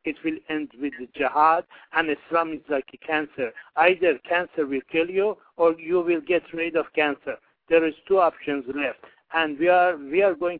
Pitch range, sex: 145-170 Hz, male